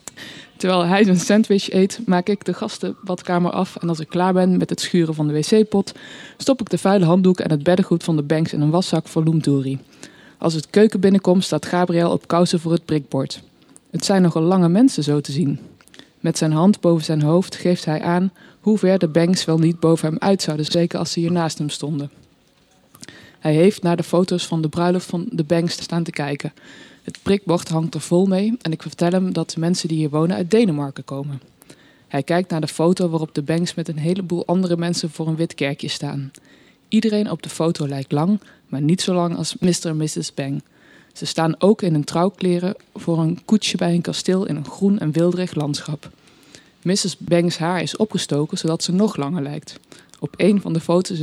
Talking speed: 210 wpm